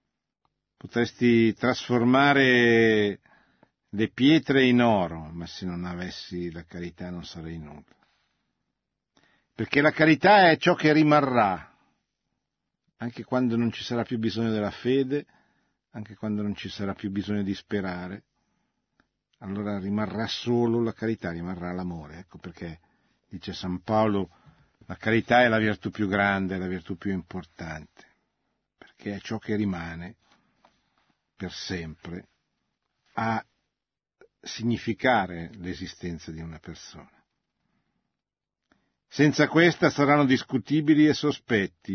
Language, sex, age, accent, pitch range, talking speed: Italian, male, 50-69, native, 90-120 Hz, 120 wpm